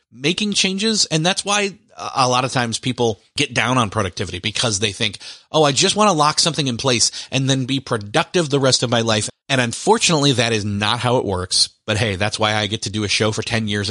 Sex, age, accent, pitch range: male, 30-49, American, 110-145 Hz